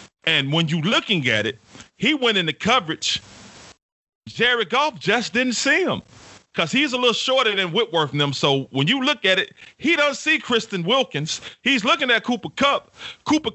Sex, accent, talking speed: male, American, 190 wpm